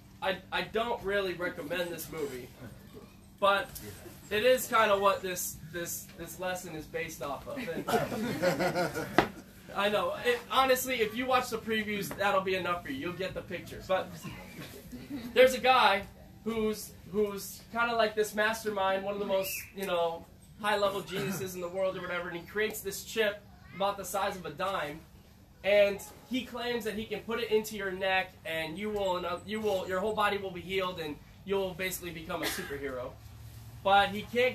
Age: 20-39